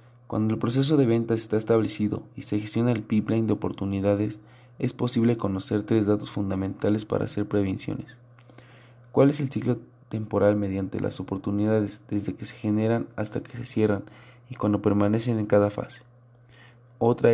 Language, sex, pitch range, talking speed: Spanish, male, 105-120 Hz, 160 wpm